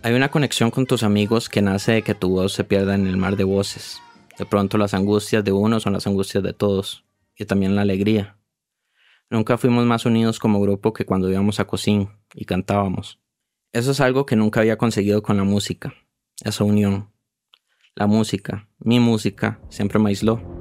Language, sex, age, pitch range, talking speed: Spanish, male, 20-39, 100-110 Hz, 190 wpm